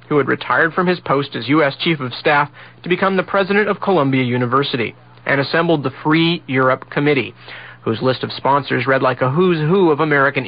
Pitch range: 130-155 Hz